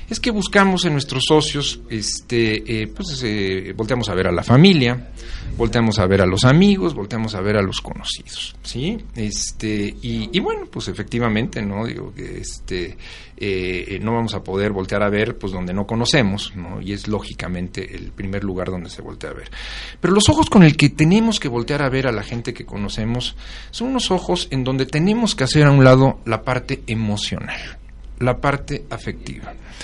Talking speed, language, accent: 195 wpm, Spanish, Mexican